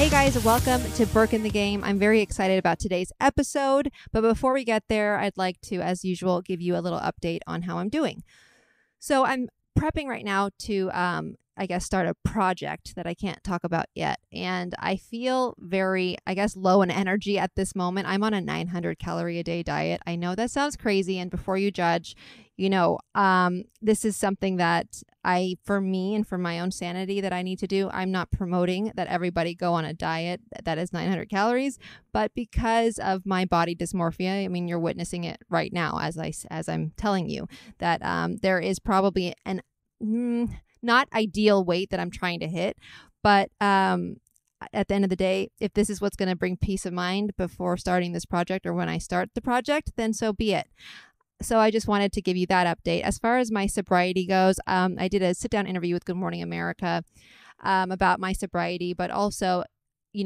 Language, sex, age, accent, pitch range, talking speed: English, female, 20-39, American, 180-205 Hz, 210 wpm